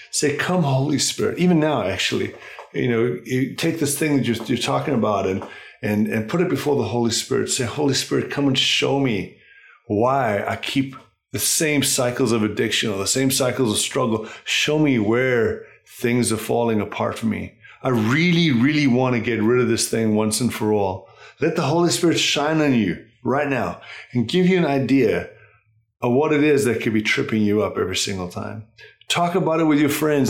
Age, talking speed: 30-49, 205 wpm